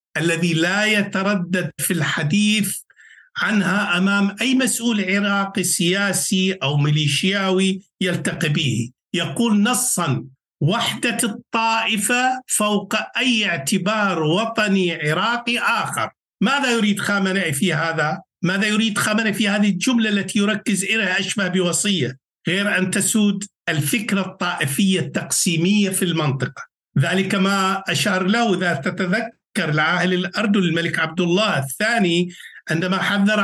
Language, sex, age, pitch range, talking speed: Arabic, male, 60-79, 180-220 Hz, 115 wpm